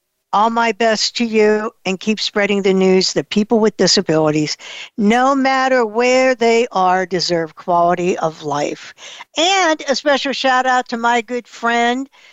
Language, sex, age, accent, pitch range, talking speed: English, female, 60-79, American, 180-235 Hz, 155 wpm